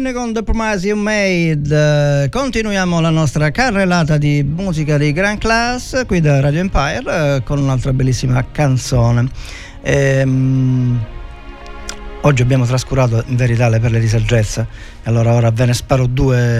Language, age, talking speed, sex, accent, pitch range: Italian, 40-59, 145 wpm, male, native, 115-140 Hz